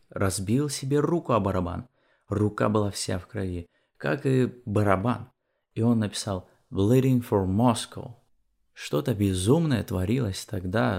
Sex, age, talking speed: male, 20-39, 125 wpm